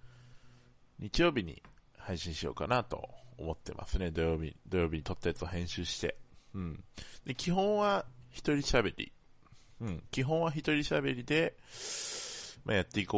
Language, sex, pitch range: Japanese, male, 80-125 Hz